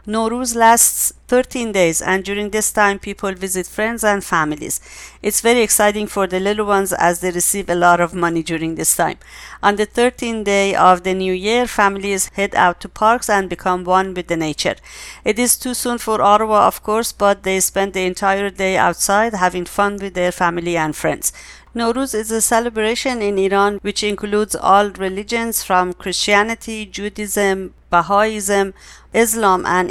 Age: 50-69